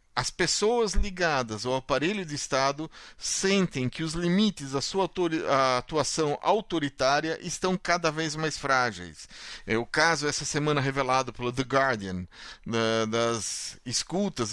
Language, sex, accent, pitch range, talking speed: Portuguese, male, Brazilian, 125-175 Hz, 130 wpm